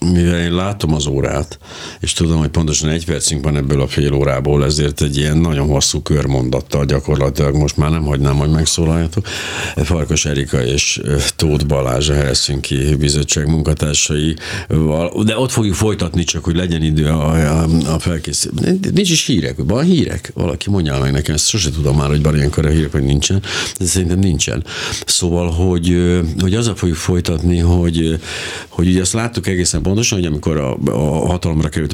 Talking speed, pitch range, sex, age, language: 170 wpm, 75-90 Hz, male, 60-79, Hungarian